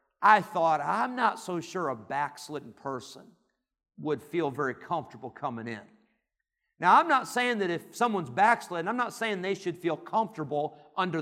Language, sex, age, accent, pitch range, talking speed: English, male, 50-69, American, 185-245 Hz, 165 wpm